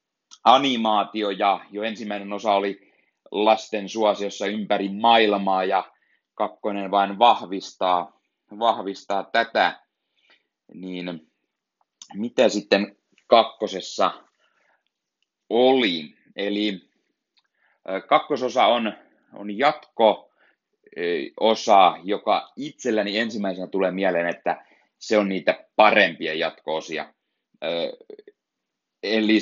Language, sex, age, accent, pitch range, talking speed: Finnish, male, 30-49, native, 95-110 Hz, 80 wpm